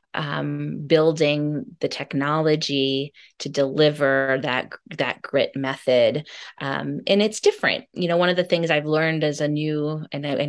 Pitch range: 145-175 Hz